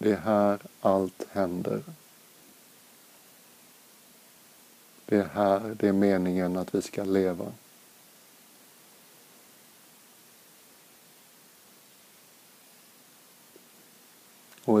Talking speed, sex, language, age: 65 wpm, male, Swedish, 50-69